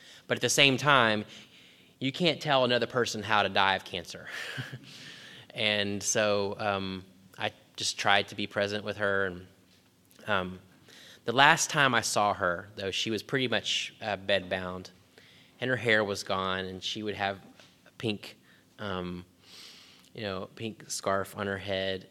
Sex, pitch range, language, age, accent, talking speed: male, 95-110 Hz, English, 20-39, American, 165 wpm